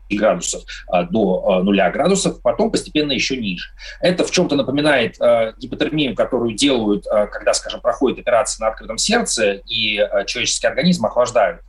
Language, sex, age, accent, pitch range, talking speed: Russian, male, 30-49, native, 110-180 Hz, 135 wpm